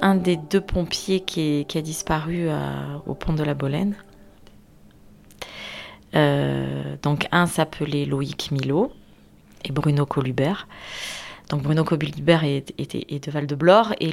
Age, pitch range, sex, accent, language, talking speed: 30-49, 145-190 Hz, female, French, French, 145 wpm